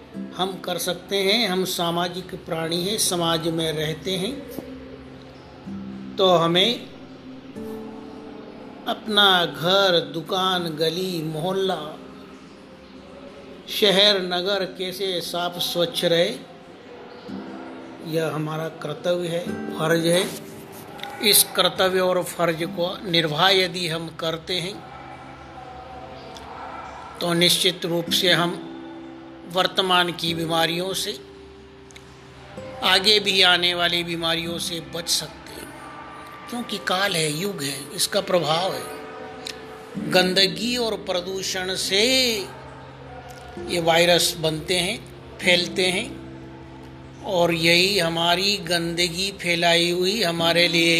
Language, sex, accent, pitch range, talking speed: Hindi, male, native, 165-195 Hz, 100 wpm